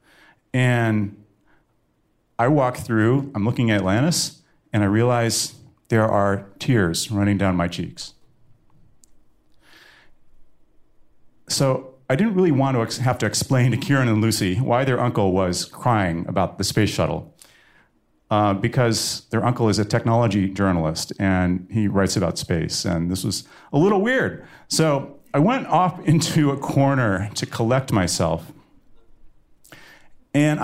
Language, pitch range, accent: English, 95-130 Hz, American